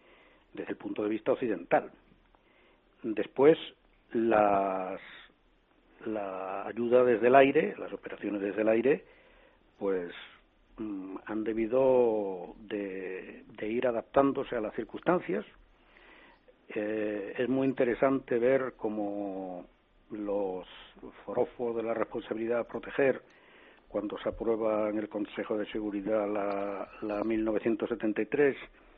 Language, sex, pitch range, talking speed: Spanish, male, 105-130 Hz, 110 wpm